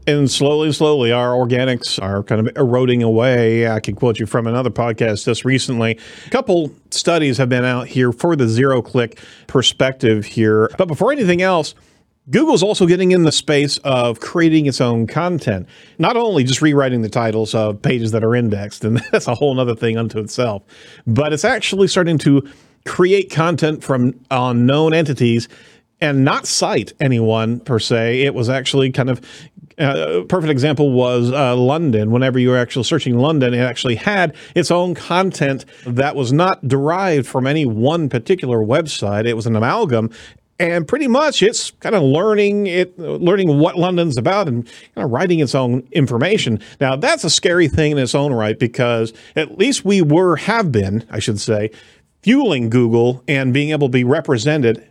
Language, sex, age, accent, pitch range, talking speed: English, male, 40-59, American, 120-155 Hz, 175 wpm